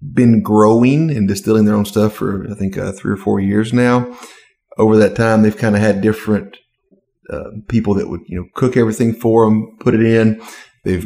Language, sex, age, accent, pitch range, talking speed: English, male, 30-49, American, 100-110 Hz, 205 wpm